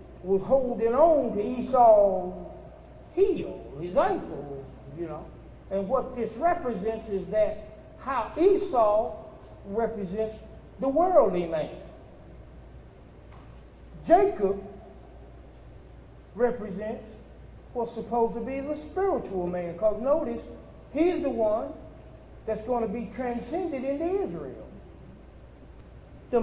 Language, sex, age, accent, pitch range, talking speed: English, male, 50-69, American, 215-295 Hz, 100 wpm